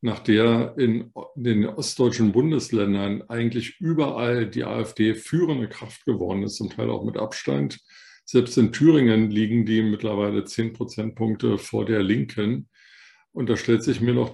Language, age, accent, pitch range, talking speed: German, 50-69, German, 110-120 Hz, 150 wpm